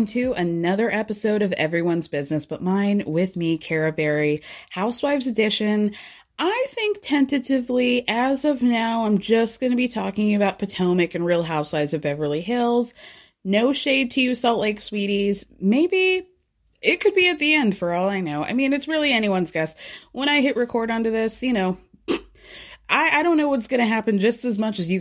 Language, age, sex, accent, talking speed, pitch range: English, 20-39, female, American, 190 wpm, 175-270 Hz